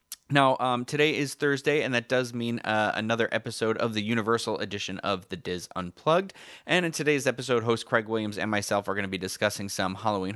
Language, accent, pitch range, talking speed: English, American, 100-130 Hz, 210 wpm